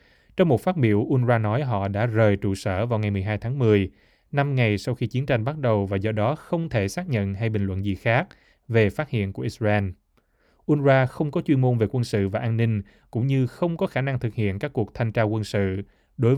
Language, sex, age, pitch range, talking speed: Vietnamese, male, 20-39, 100-125 Hz, 245 wpm